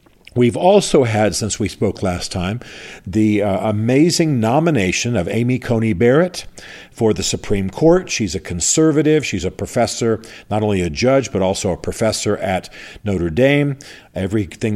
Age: 50-69